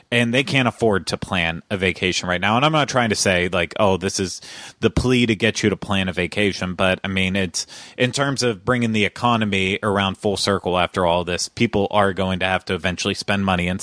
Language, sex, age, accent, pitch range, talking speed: English, male, 30-49, American, 95-115 Hz, 240 wpm